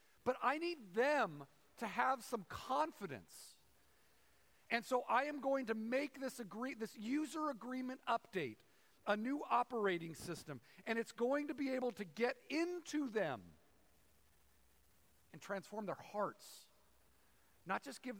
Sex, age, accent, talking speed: male, 50-69, American, 135 wpm